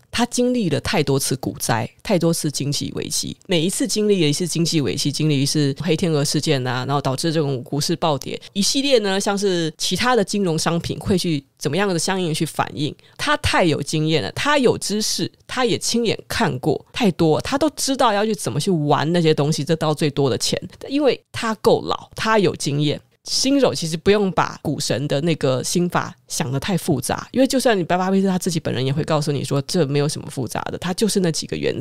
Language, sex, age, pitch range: Chinese, female, 20-39, 145-185 Hz